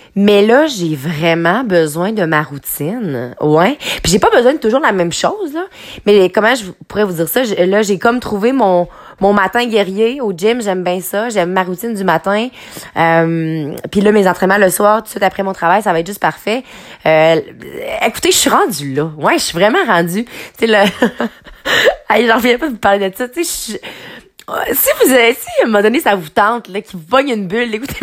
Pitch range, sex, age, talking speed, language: 175-235 Hz, female, 20-39, 215 wpm, French